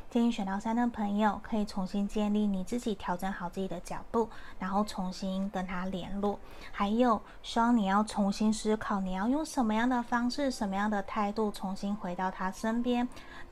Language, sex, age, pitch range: Chinese, female, 20-39, 205-240 Hz